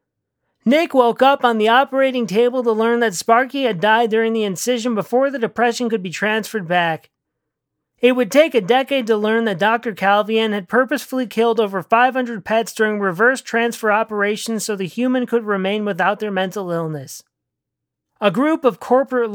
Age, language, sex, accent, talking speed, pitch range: 40-59, English, male, American, 175 wpm, 200-240 Hz